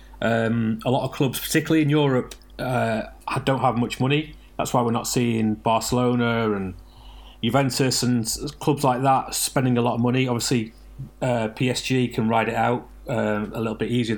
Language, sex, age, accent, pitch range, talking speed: English, male, 30-49, British, 115-140 Hz, 180 wpm